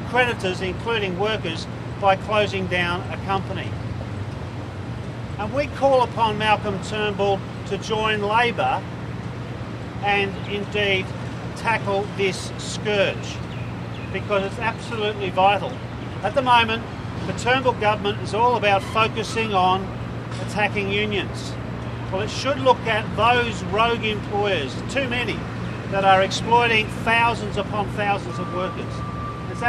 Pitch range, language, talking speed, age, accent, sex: 130-220 Hz, English, 115 wpm, 40-59, Australian, male